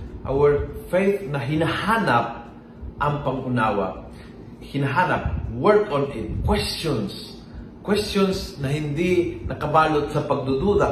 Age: 40-59